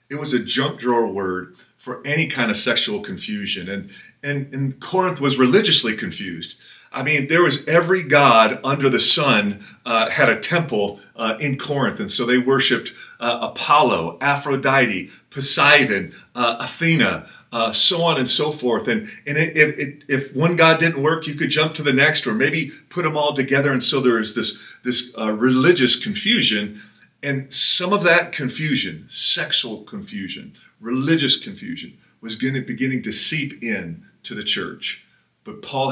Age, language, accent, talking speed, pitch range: 40-59, English, American, 160 wpm, 115-155 Hz